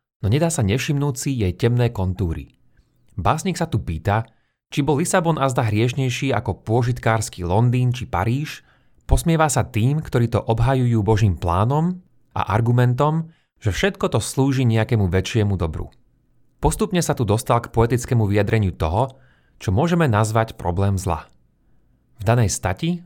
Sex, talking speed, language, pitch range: male, 145 wpm, Slovak, 100-130 Hz